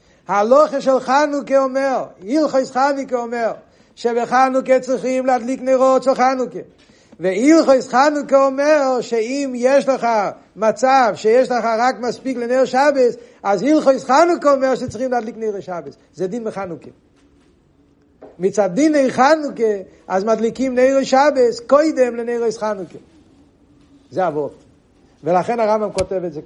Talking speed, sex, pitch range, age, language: 130 wpm, male, 185-255 Hz, 50-69, Hebrew